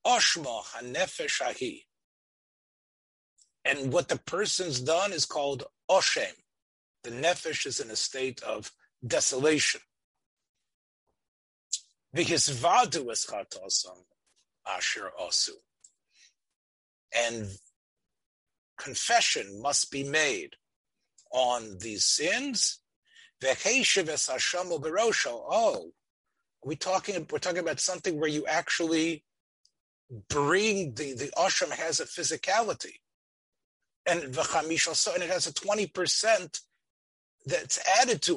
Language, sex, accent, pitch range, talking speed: English, male, American, 140-205 Hz, 85 wpm